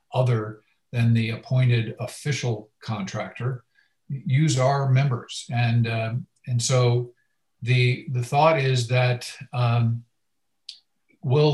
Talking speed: 105 wpm